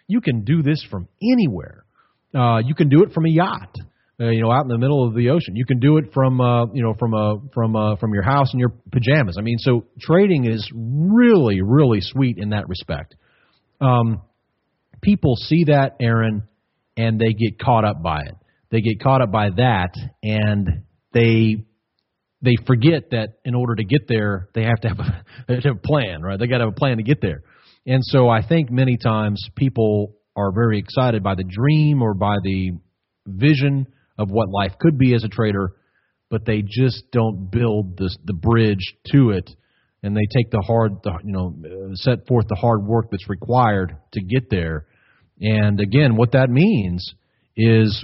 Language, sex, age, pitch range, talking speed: Persian, male, 40-59, 105-130 Hz, 205 wpm